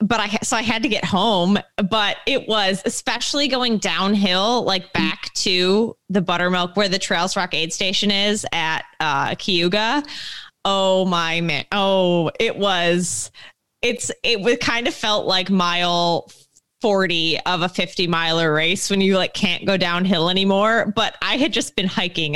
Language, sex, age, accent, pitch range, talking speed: English, female, 20-39, American, 175-220 Hz, 165 wpm